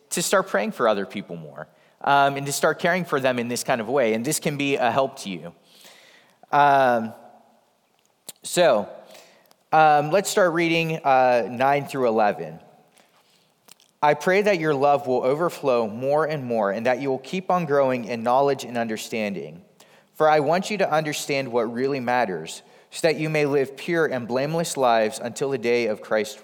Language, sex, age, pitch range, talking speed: English, male, 30-49, 125-155 Hz, 185 wpm